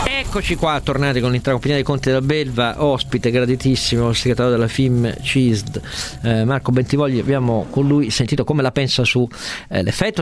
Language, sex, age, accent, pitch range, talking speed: Italian, male, 40-59, native, 115-145 Hz, 160 wpm